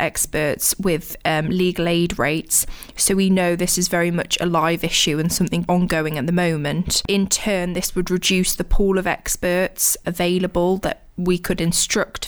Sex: female